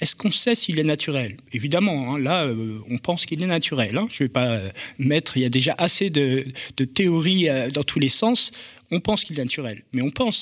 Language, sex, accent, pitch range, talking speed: French, male, French, 135-215 Hz, 250 wpm